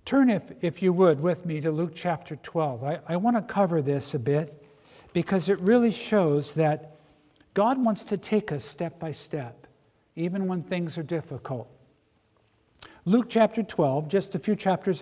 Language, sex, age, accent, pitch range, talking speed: English, male, 60-79, American, 155-210 Hz, 170 wpm